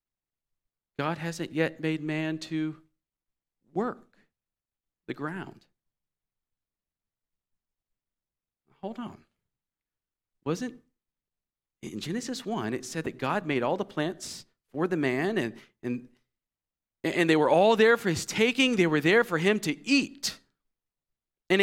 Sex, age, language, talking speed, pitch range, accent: male, 40-59, English, 120 wpm, 165-240 Hz, American